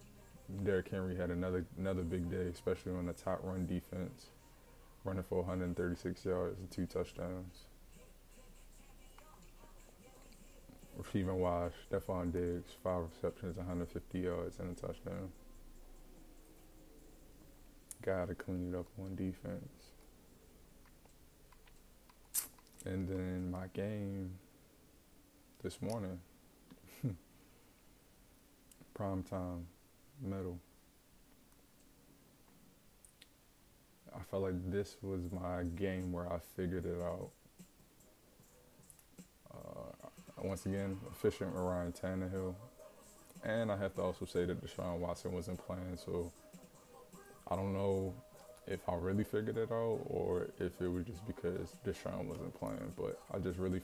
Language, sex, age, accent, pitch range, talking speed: English, male, 20-39, American, 90-95 Hz, 110 wpm